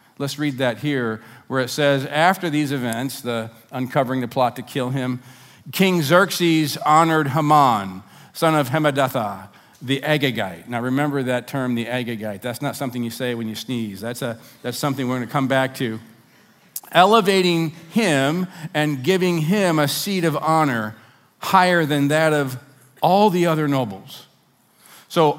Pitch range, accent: 130-175 Hz, American